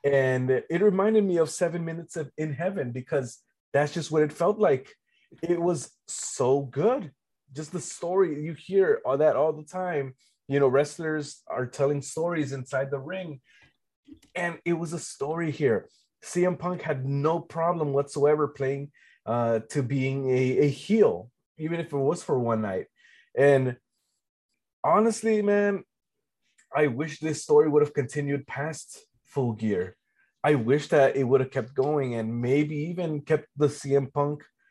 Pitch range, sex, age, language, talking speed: 130-165 Hz, male, 20-39, English, 165 wpm